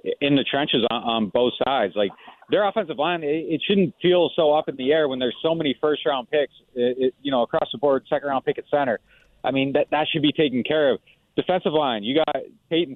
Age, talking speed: 30-49, 245 wpm